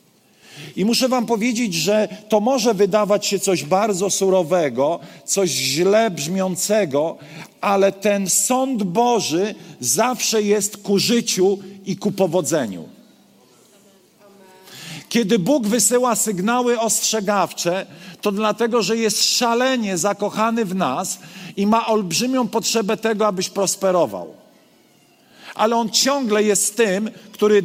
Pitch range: 190-230 Hz